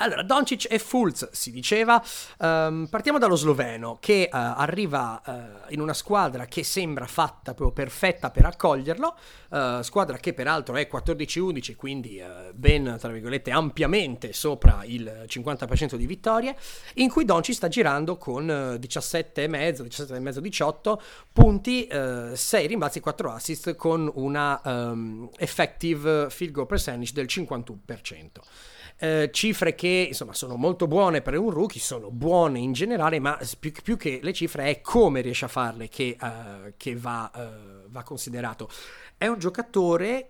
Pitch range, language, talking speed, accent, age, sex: 125-170 Hz, Italian, 145 wpm, native, 30-49, male